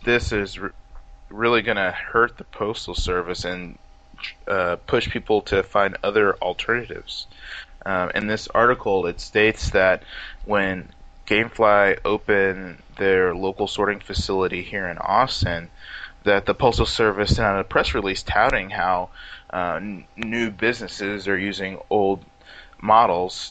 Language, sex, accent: English, male, American